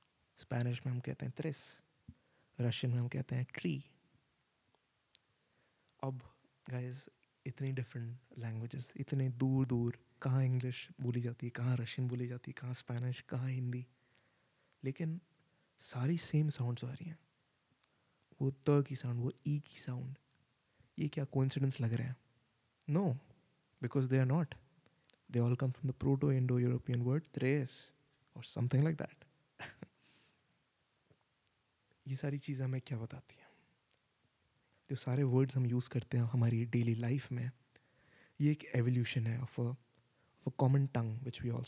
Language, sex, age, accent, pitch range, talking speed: Hindi, male, 20-39, native, 125-140 Hz, 145 wpm